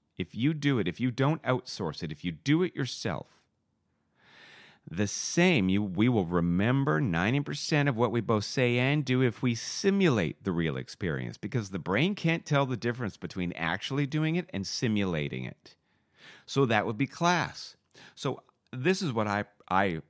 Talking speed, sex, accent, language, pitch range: 175 wpm, male, American, English, 100-145 Hz